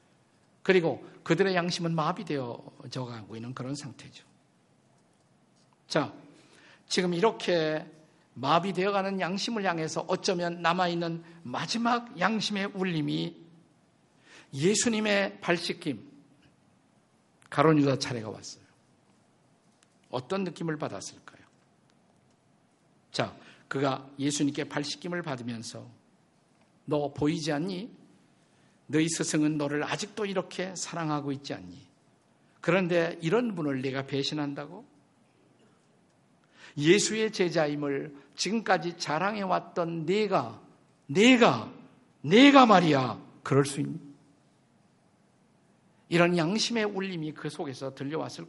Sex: male